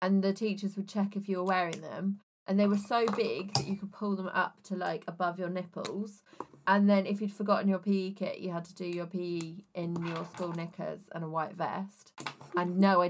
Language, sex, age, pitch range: English, female, 20-39, 175-200 Hz